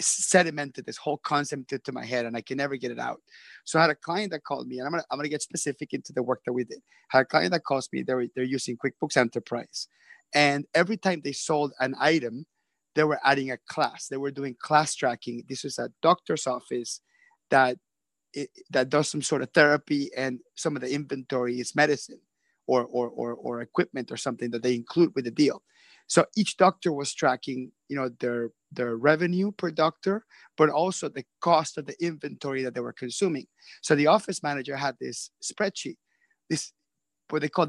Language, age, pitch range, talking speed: English, 30-49, 130-160 Hz, 210 wpm